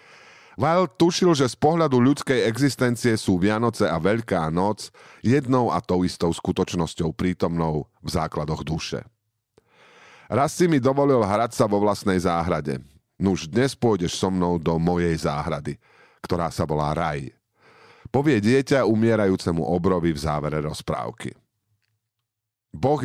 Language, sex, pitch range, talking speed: Slovak, male, 85-120 Hz, 130 wpm